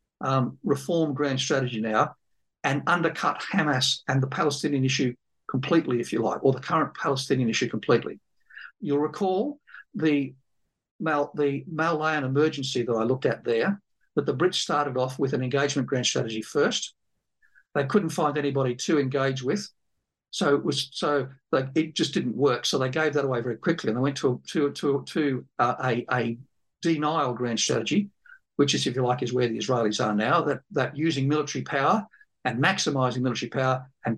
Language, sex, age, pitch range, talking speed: English, male, 50-69, 130-155 Hz, 180 wpm